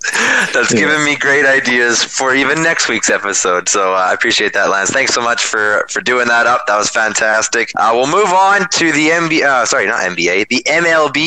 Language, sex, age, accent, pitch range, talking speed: English, male, 20-39, American, 120-155 Hz, 220 wpm